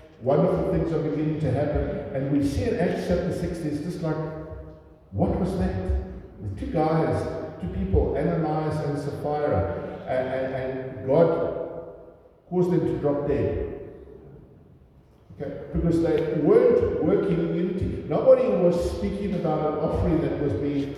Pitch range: 130-185 Hz